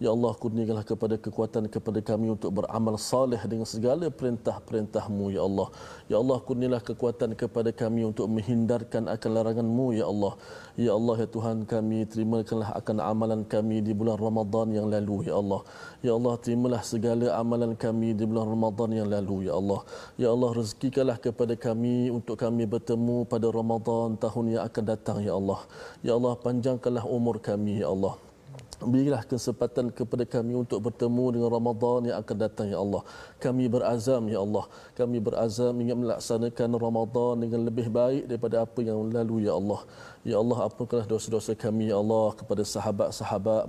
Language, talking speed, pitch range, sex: Malayalam, 165 wpm, 105-120 Hz, male